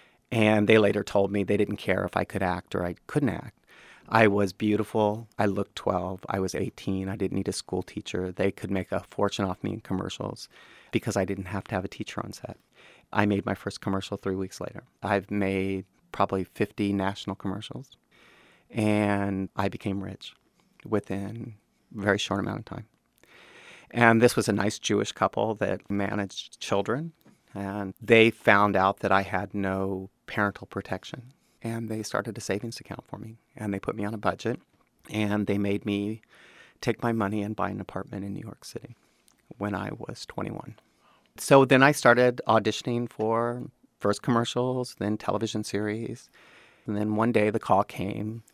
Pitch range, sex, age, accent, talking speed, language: 100-115 Hz, male, 30-49, American, 180 wpm, English